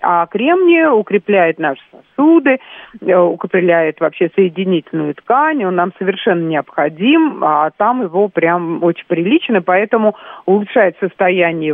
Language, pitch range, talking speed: Russian, 170-220 Hz, 110 wpm